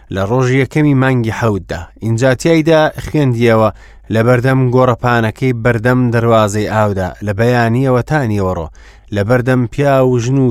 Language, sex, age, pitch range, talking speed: English, male, 30-49, 105-140 Hz, 130 wpm